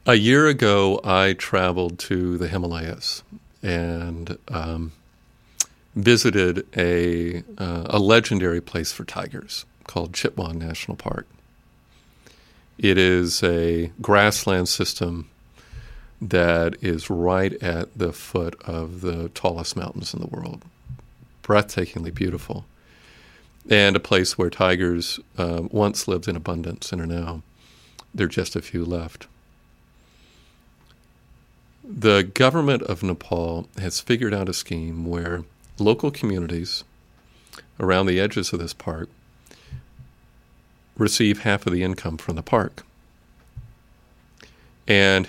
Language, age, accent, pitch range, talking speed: English, 50-69, American, 85-105 Hz, 115 wpm